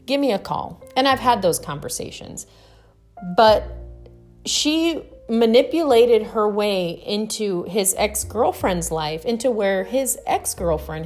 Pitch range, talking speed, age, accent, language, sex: 160-240 Hz, 120 wpm, 30-49, American, English, female